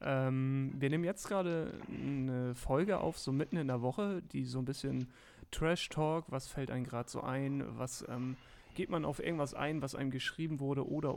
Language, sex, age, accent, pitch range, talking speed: German, male, 40-59, German, 135-170 Hz, 195 wpm